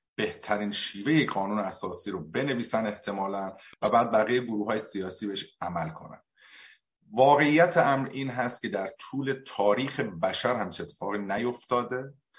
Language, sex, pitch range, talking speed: Persian, male, 105-135 Hz, 135 wpm